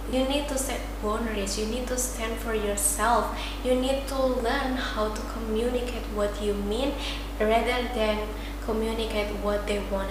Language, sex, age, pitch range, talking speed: English, female, 20-39, 210-245 Hz, 160 wpm